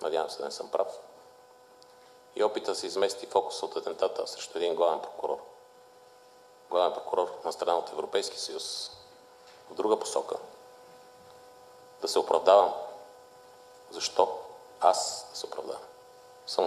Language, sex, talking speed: Bulgarian, male, 120 wpm